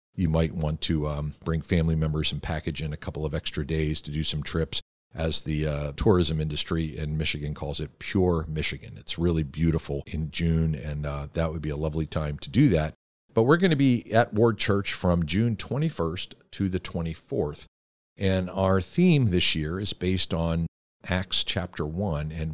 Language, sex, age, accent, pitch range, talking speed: English, male, 50-69, American, 80-95 Hz, 195 wpm